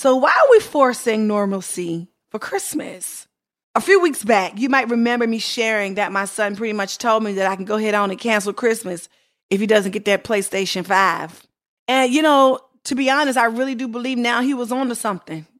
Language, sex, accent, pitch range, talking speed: English, female, American, 205-275 Hz, 215 wpm